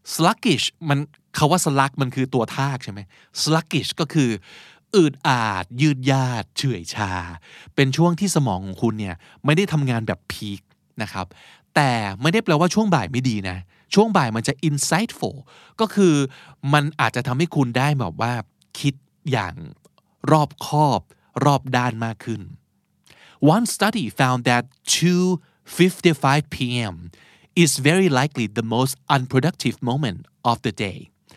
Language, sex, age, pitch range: Thai, male, 20-39, 115-165 Hz